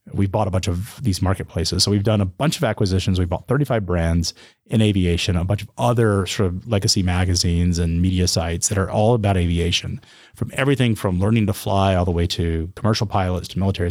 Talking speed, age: 215 wpm, 30-49